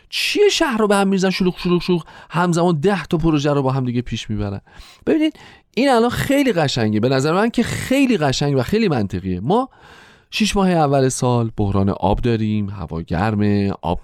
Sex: male